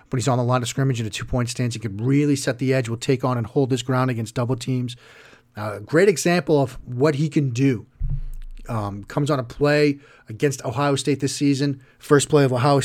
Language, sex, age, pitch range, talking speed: English, male, 40-59, 120-145 Hz, 235 wpm